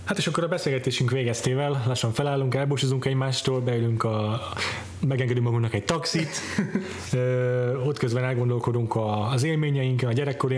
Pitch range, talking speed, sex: 110-130 Hz, 130 wpm, male